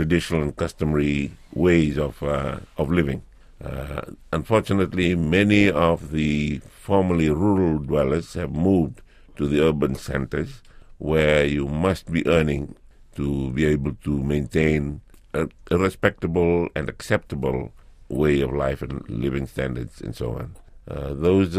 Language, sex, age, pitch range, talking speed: English, male, 50-69, 75-95 Hz, 135 wpm